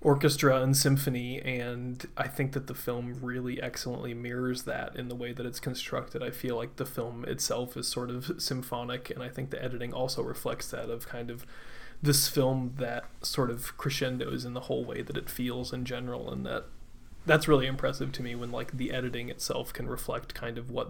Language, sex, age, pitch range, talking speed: English, male, 20-39, 120-135 Hz, 205 wpm